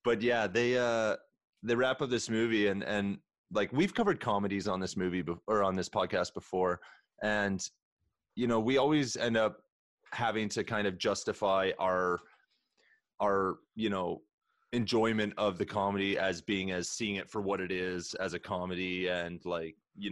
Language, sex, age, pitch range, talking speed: English, male, 30-49, 95-120 Hz, 175 wpm